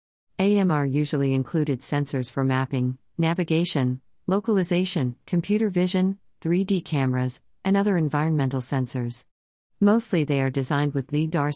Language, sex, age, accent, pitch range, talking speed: English, female, 50-69, American, 130-155 Hz, 115 wpm